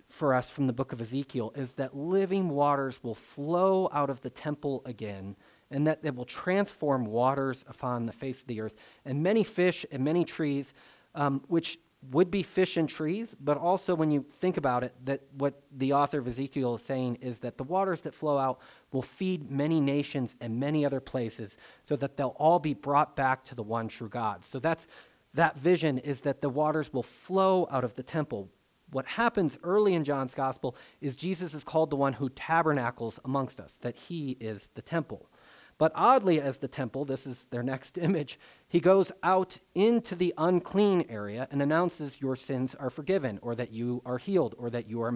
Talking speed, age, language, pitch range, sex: 200 wpm, 30-49, English, 125-165 Hz, male